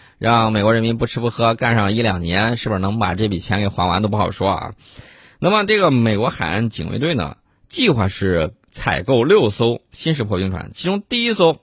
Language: Chinese